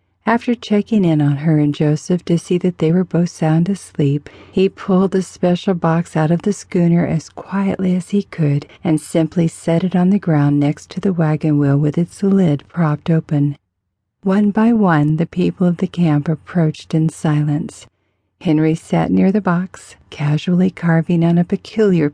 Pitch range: 150-185 Hz